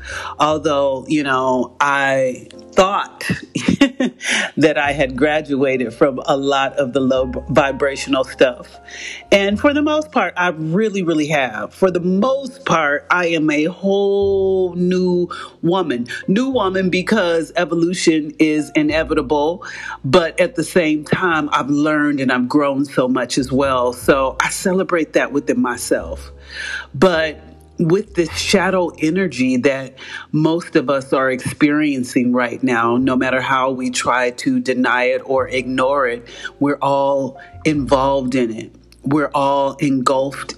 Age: 40-59